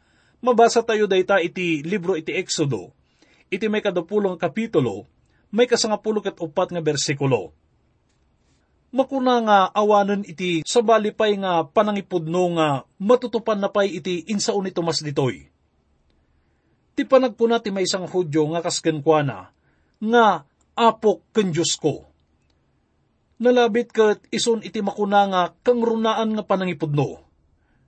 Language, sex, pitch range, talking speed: English, male, 155-220 Hz, 110 wpm